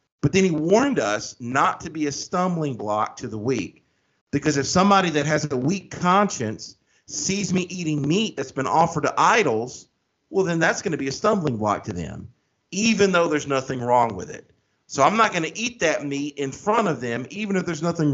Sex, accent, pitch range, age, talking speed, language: male, American, 130-170 Hz, 40-59, 215 wpm, English